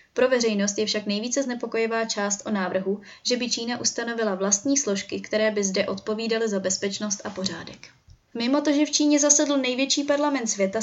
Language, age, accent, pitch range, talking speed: Czech, 20-39, native, 205-245 Hz, 175 wpm